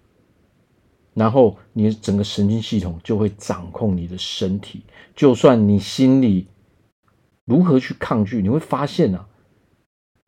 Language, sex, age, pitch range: Chinese, male, 50-69, 95-125 Hz